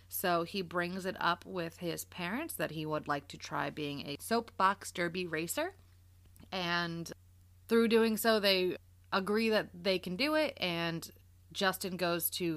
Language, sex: English, female